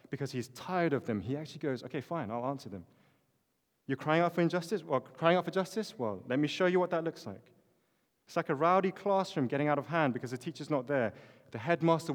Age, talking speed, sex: 30-49, 235 wpm, male